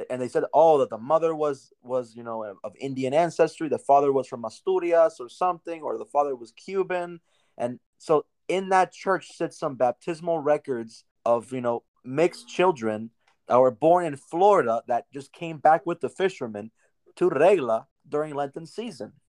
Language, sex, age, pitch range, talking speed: English, male, 20-39, 125-170 Hz, 175 wpm